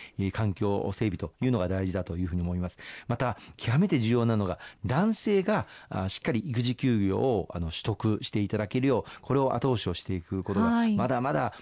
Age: 40-59